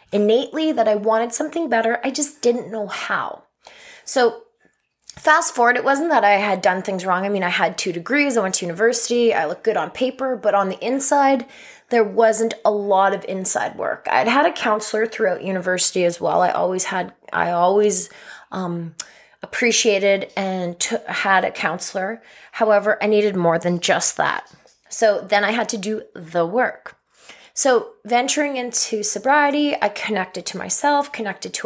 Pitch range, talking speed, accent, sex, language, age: 190-245 Hz, 175 wpm, American, female, English, 20-39